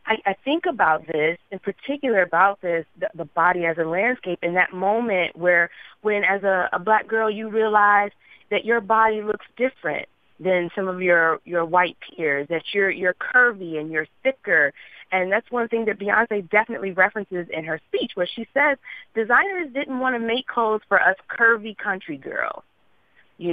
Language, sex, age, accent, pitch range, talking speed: English, female, 30-49, American, 170-225 Hz, 185 wpm